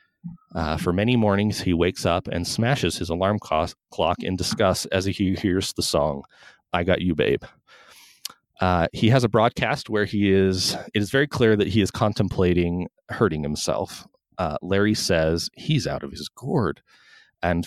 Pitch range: 90-120 Hz